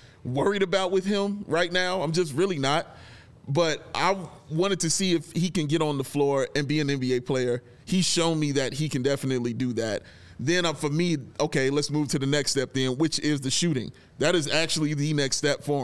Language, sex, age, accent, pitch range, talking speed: English, male, 30-49, American, 135-165 Hz, 225 wpm